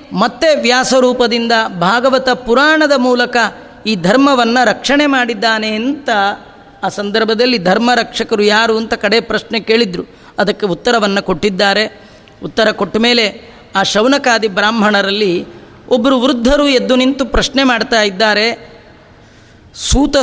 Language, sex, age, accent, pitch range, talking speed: Kannada, female, 30-49, native, 225-270 Hz, 105 wpm